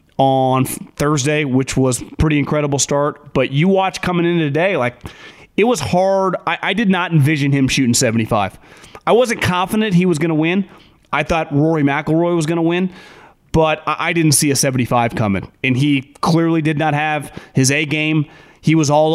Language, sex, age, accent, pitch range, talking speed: English, male, 30-49, American, 135-155 Hz, 200 wpm